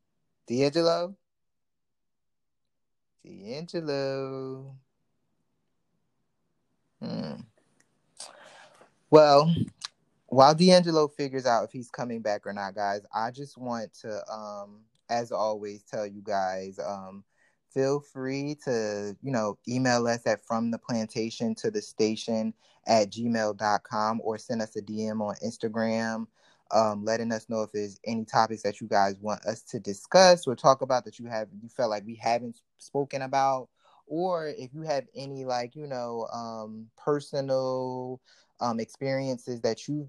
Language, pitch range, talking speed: English, 105-135 Hz, 135 wpm